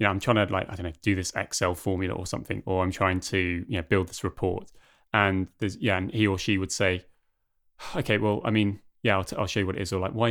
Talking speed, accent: 290 wpm, British